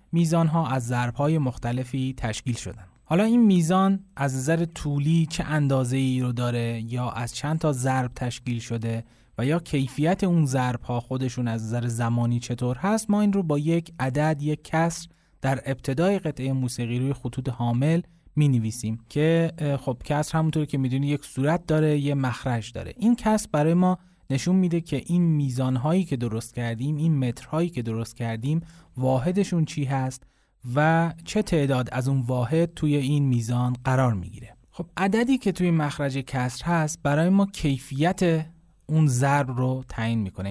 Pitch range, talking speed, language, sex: 120-160 Hz, 170 wpm, Persian, male